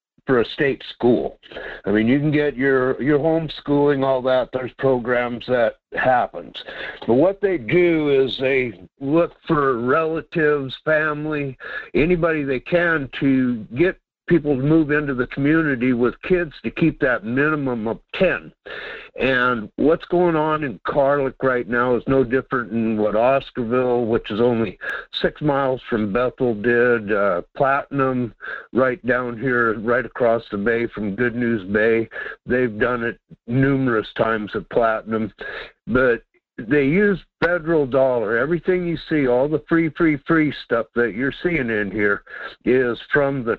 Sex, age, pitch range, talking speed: male, 60-79, 115-150 Hz, 150 wpm